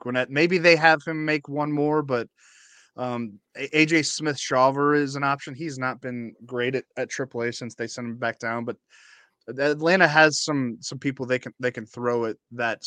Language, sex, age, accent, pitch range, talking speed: English, male, 20-39, American, 115-140 Hz, 200 wpm